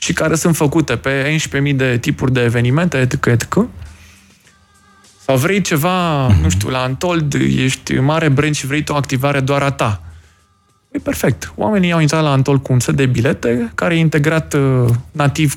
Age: 20-39